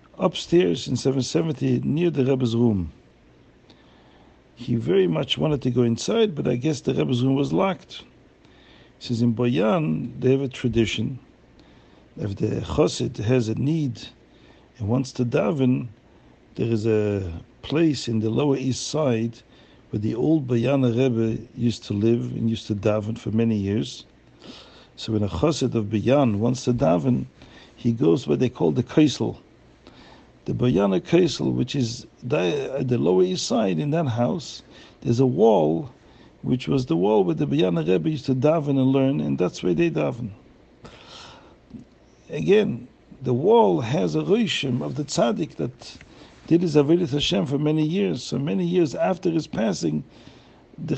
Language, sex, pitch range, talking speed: English, male, 115-155 Hz, 160 wpm